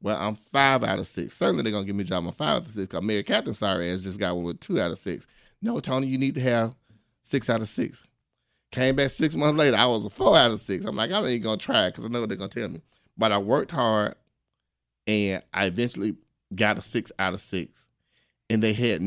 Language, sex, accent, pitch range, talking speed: English, male, American, 95-120 Hz, 275 wpm